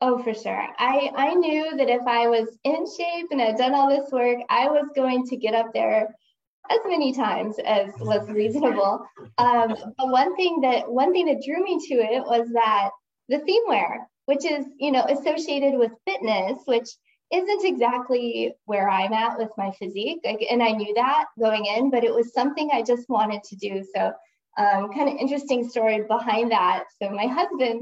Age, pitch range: 20-39, 215-270 Hz